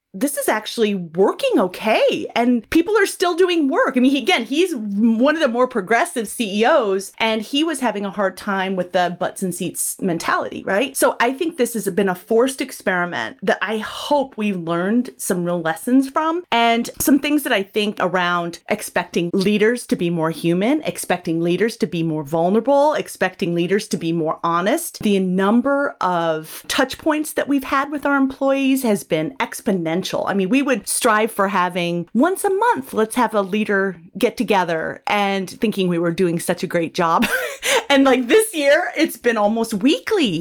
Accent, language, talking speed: American, English, 185 wpm